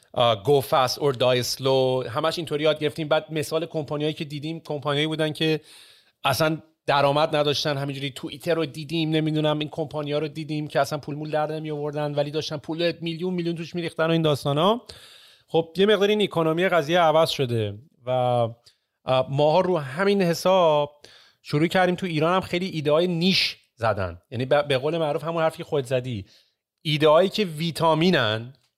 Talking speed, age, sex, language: 175 wpm, 30-49, male, Persian